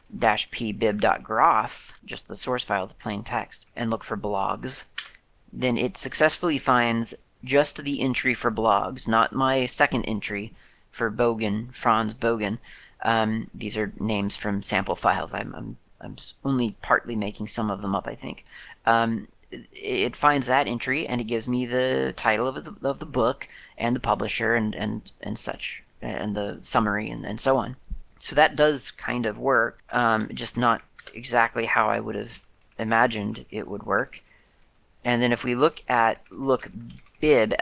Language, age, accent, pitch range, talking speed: English, 30-49, American, 105-125 Hz, 170 wpm